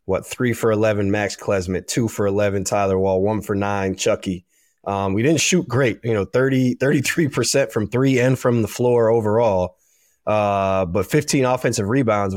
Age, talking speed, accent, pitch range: 20-39, 180 wpm, American, 100-120 Hz